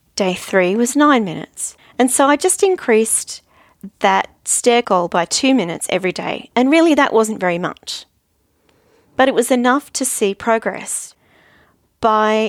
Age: 40-59